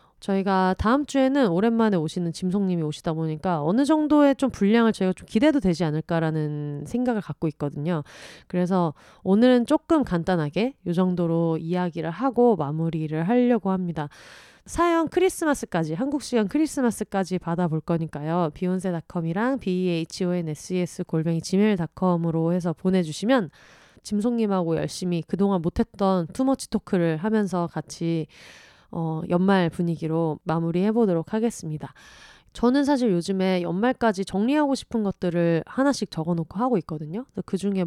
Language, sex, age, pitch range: Korean, female, 30-49, 165-225 Hz